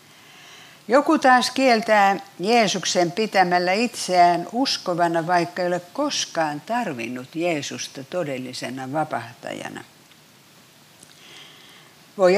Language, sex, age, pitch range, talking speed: Finnish, female, 60-79, 155-215 Hz, 80 wpm